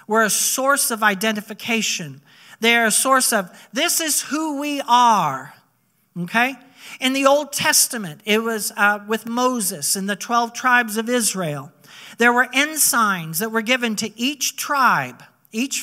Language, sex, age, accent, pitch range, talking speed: English, male, 50-69, American, 220-270 Hz, 150 wpm